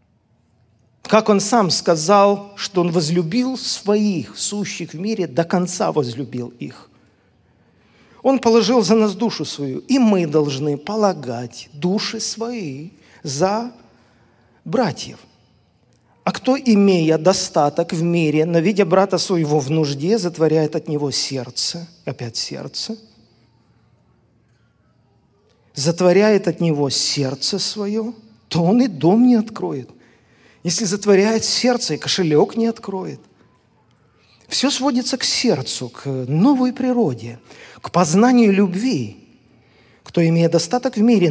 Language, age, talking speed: Russian, 40-59, 115 wpm